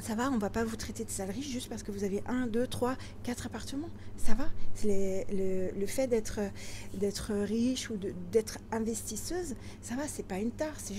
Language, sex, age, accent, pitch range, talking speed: French, female, 40-59, French, 205-240 Hz, 235 wpm